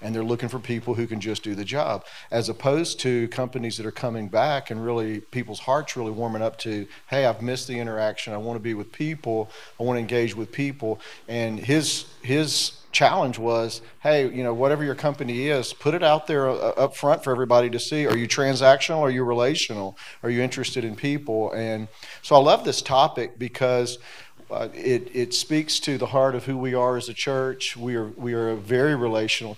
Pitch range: 115-130 Hz